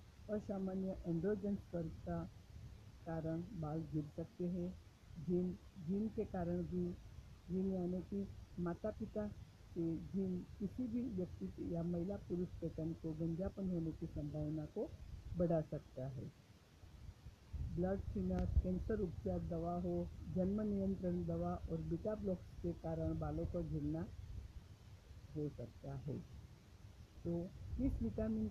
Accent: native